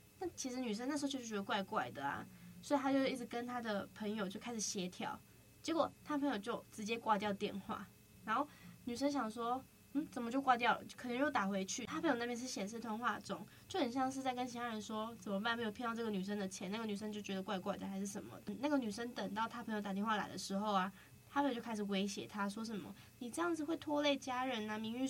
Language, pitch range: Chinese, 210-260 Hz